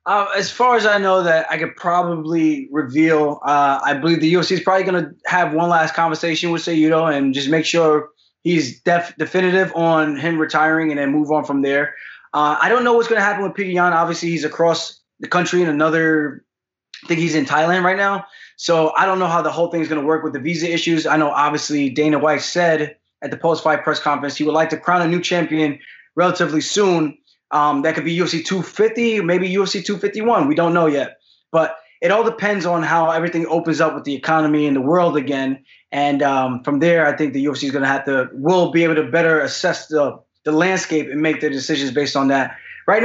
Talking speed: 225 wpm